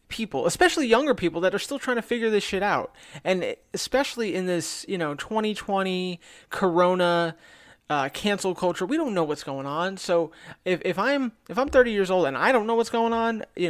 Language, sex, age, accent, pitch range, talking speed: English, male, 30-49, American, 160-200 Hz, 205 wpm